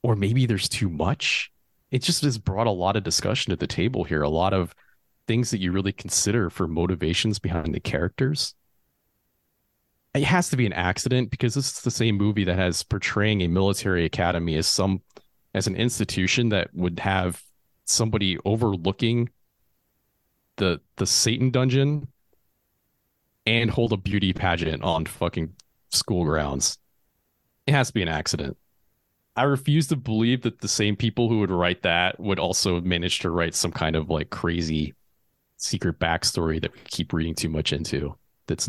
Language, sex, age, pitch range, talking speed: English, male, 30-49, 85-115 Hz, 170 wpm